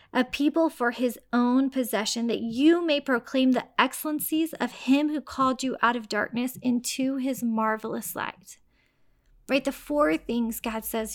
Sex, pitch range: female, 225-260 Hz